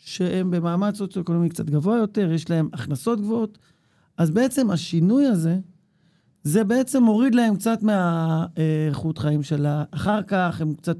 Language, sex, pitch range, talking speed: Hebrew, male, 165-210 Hz, 145 wpm